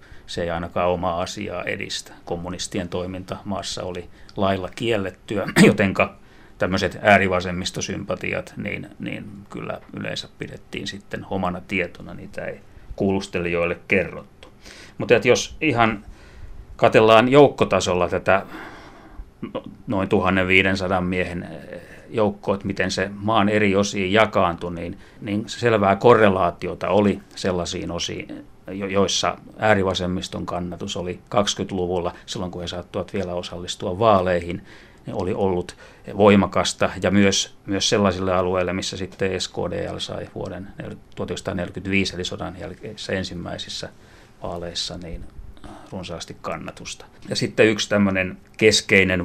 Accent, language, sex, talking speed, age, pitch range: native, Finnish, male, 105 wpm, 30-49, 90-100 Hz